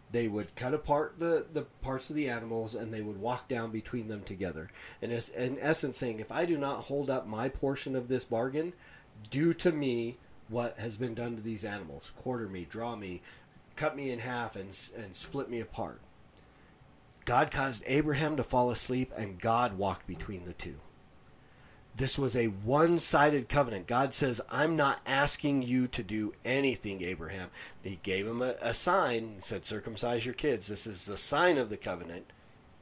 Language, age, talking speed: English, 40-59, 185 wpm